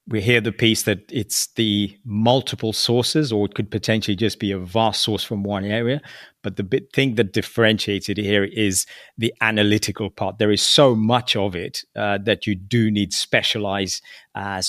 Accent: British